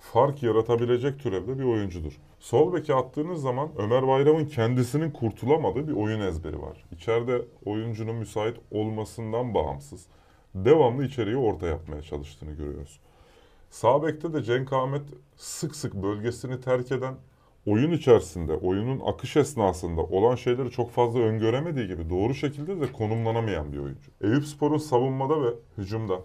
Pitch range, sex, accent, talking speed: 90-130 Hz, male, native, 135 wpm